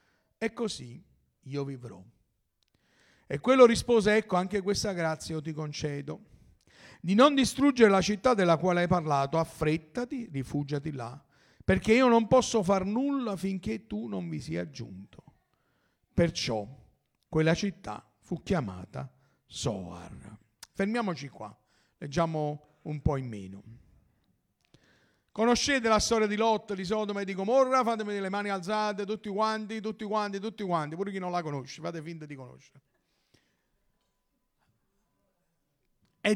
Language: Italian